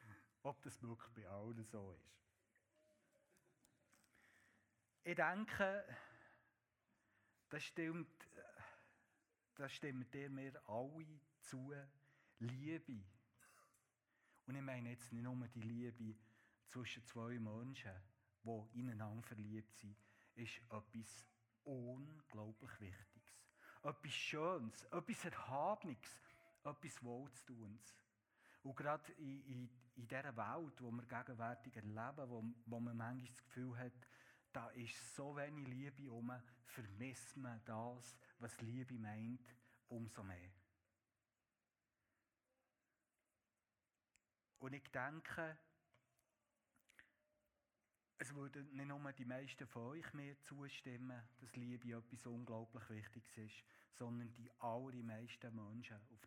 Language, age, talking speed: German, 60-79, 105 wpm